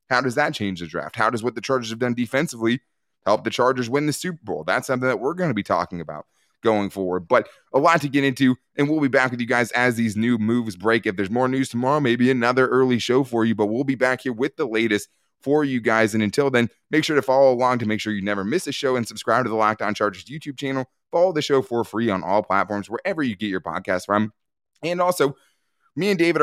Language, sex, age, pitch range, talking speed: English, male, 20-39, 100-130 Hz, 260 wpm